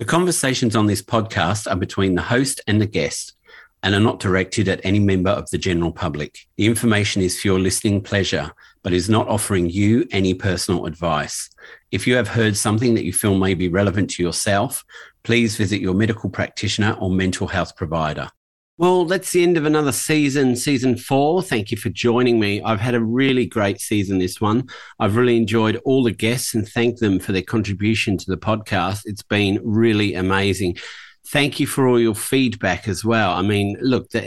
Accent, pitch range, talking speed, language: Australian, 95-120 Hz, 200 wpm, English